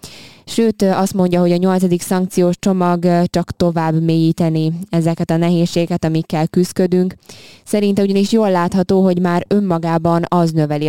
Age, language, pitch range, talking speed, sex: 20-39, Hungarian, 160-175 Hz, 140 wpm, female